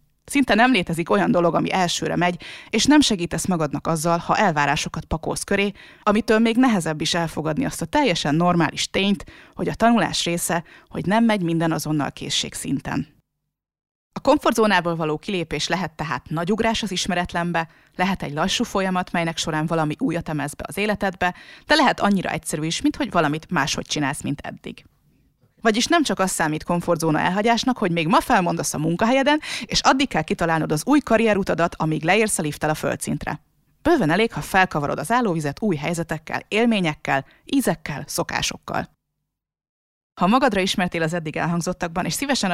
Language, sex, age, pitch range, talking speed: Hungarian, female, 20-39, 160-215 Hz, 165 wpm